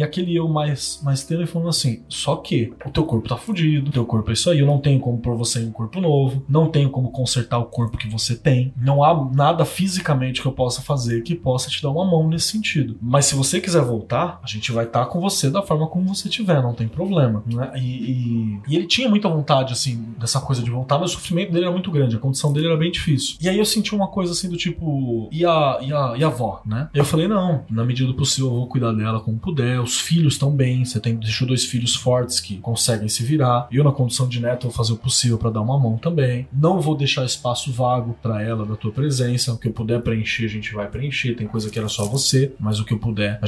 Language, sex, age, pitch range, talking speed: Portuguese, male, 20-39, 120-160 Hz, 260 wpm